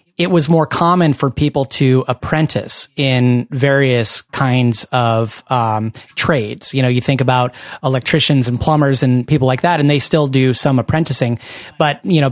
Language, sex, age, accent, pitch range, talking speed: English, male, 30-49, American, 130-155 Hz, 170 wpm